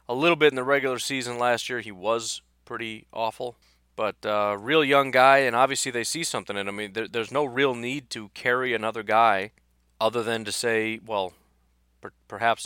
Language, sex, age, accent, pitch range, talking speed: English, male, 30-49, American, 100-120 Hz, 185 wpm